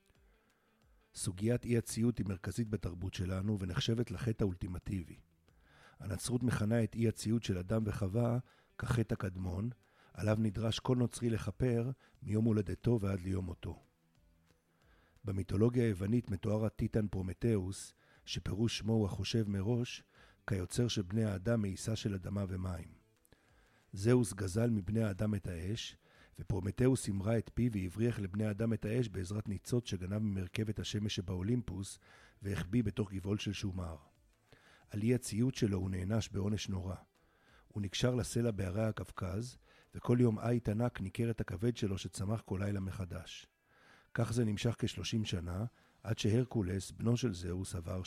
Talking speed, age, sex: 135 wpm, 50-69, male